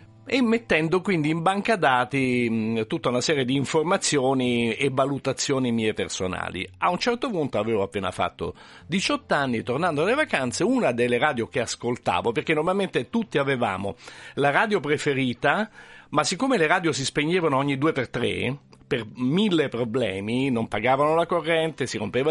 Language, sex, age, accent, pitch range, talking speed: Italian, male, 50-69, native, 120-180 Hz, 155 wpm